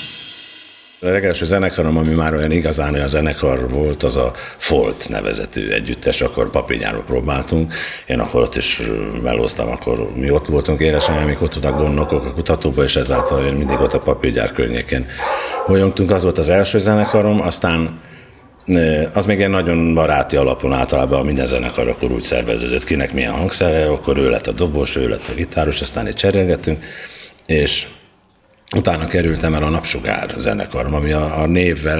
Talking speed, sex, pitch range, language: 160 wpm, male, 70-90 Hz, Hungarian